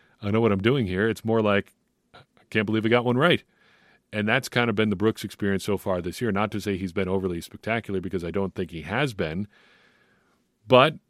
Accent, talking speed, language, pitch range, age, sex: American, 230 wpm, English, 95-120 Hz, 40-59, male